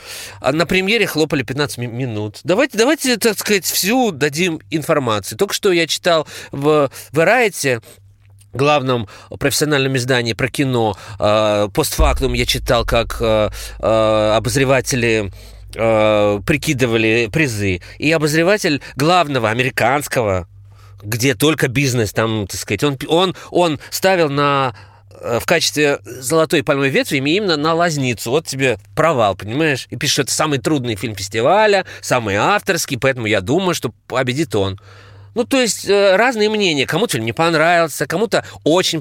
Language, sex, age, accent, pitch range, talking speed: Russian, male, 20-39, native, 115-160 Hz, 130 wpm